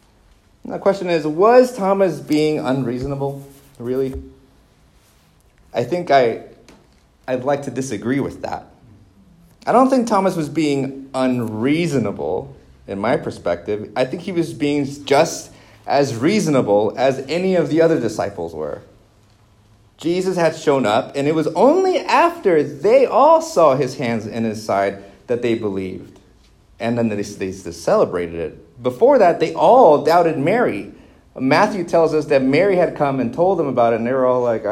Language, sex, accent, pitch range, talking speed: English, male, American, 120-160 Hz, 155 wpm